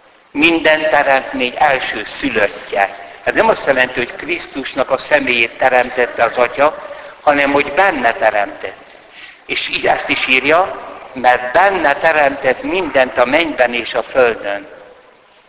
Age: 60-79